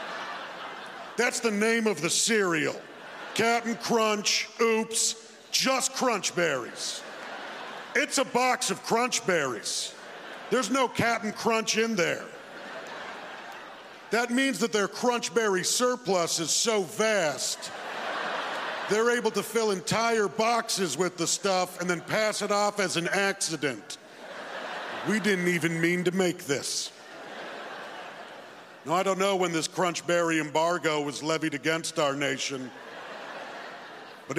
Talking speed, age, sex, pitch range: 130 wpm, 50-69, male, 155-210 Hz